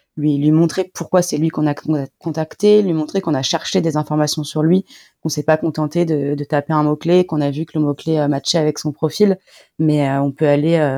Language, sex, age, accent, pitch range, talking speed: English, female, 20-39, French, 145-165 Hz, 245 wpm